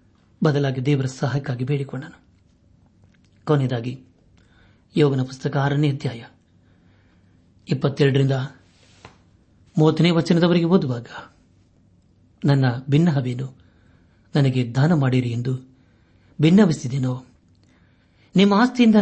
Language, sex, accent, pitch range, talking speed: Kannada, male, native, 105-155 Hz, 60 wpm